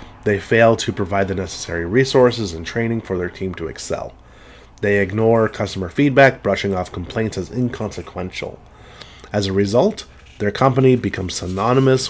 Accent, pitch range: American, 90-120 Hz